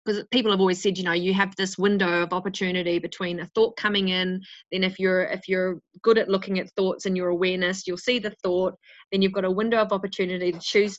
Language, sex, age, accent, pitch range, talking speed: English, female, 30-49, Australian, 180-205 Hz, 240 wpm